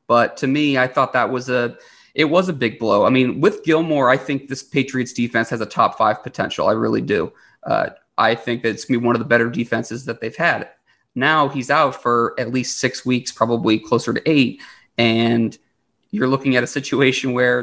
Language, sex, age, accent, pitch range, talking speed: English, male, 30-49, American, 125-150 Hz, 220 wpm